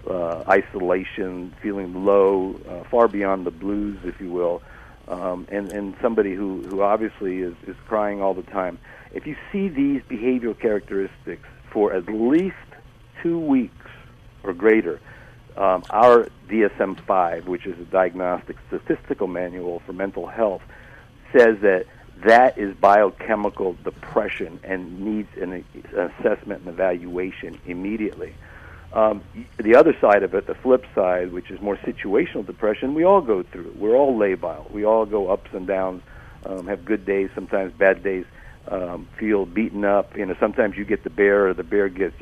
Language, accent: English, American